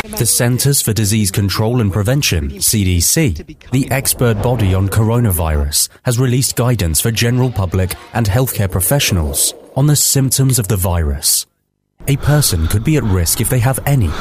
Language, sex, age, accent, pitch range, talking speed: English, male, 30-49, British, 95-130 Hz, 160 wpm